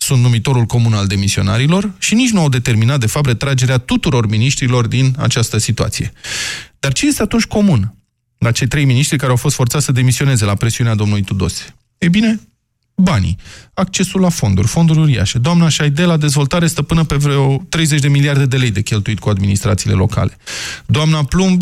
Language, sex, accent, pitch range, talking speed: Romanian, male, native, 115-165 Hz, 180 wpm